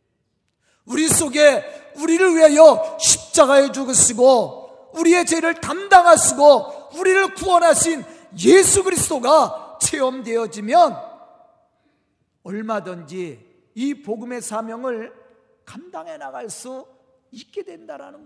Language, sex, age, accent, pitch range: Korean, male, 40-59, native, 230-310 Hz